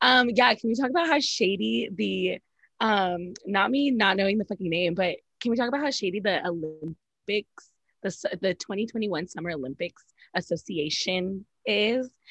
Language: English